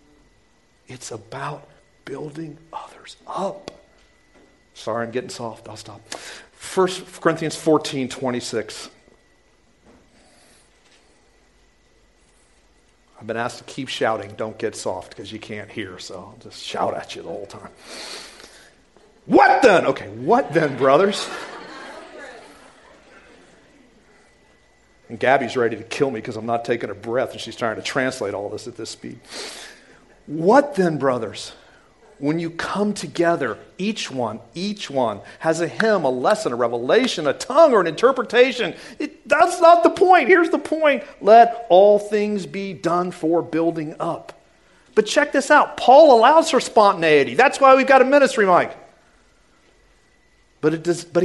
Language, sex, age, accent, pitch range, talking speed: English, male, 50-69, American, 135-230 Hz, 140 wpm